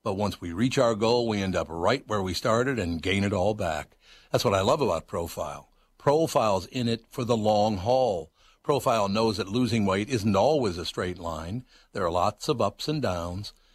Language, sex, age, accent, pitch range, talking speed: English, male, 60-79, American, 95-125 Hz, 210 wpm